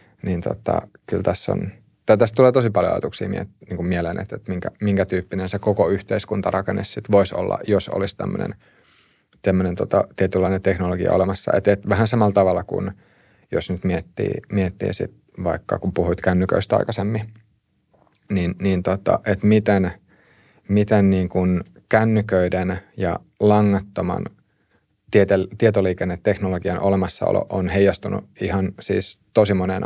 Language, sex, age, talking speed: Finnish, male, 30-49, 135 wpm